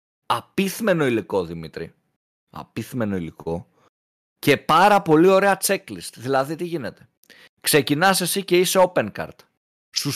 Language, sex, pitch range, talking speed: Greek, male, 140-195 Hz, 120 wpm